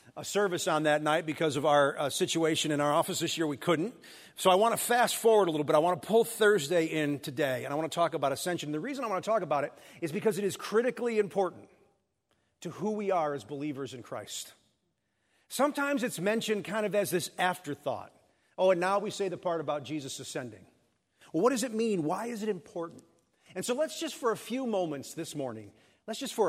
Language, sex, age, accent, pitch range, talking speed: English, male, 40-59, American, 145-210 Hz, 230 wpm